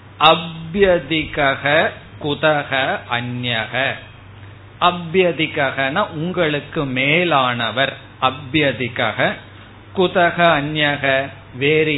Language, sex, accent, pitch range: Tamil, male, native, 125-170 Hz